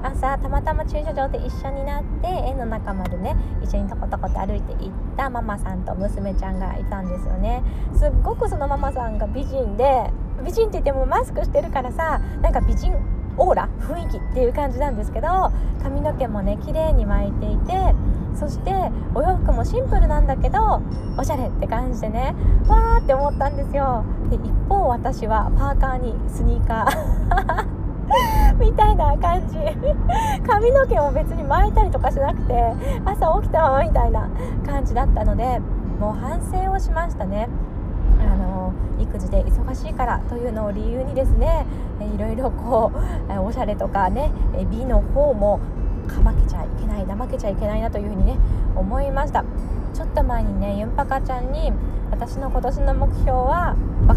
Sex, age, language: female, 20-39, Japanese